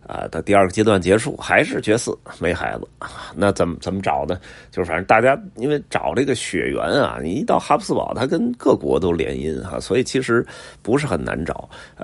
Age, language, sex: 30-49, Chinese, male